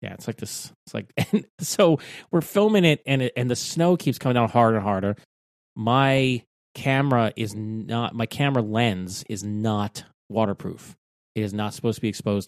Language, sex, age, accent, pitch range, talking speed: English, male, 30-49, American, 105-130 Hz, 190 wpm